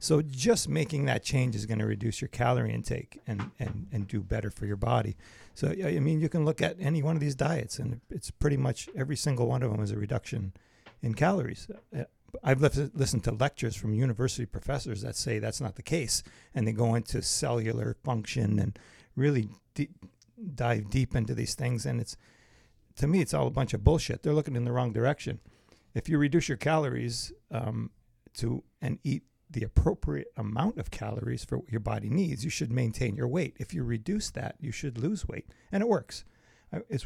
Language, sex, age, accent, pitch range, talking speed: English, male, 40-59, American, 115-145 Hz, 200 wpm